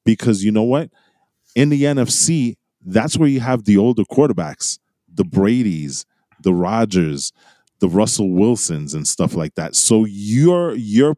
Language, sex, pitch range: English, male, 90-120 Hz